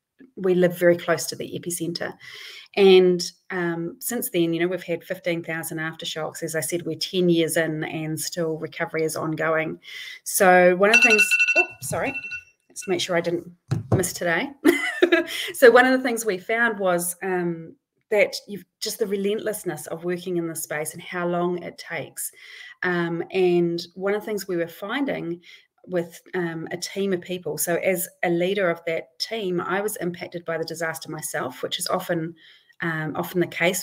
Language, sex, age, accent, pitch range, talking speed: English, female, 30-49, Australian, 165-195 Hz, 180 wpm